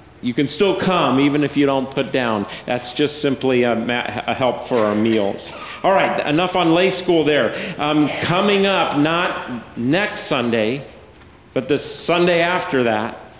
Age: 50-69